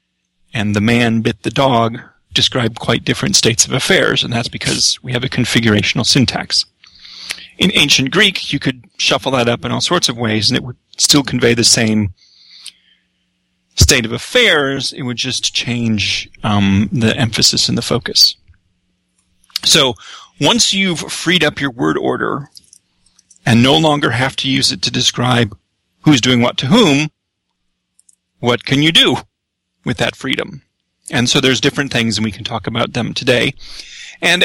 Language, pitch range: English, 105-135 Hz